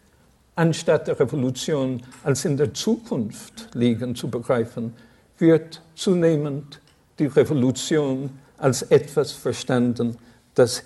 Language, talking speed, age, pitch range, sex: German, 100 wpm, 60-79, 120-155 Hz, male